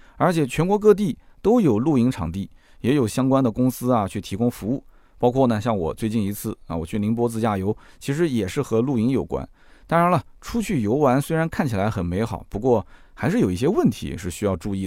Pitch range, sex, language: 105-150 Hz, male, Chinese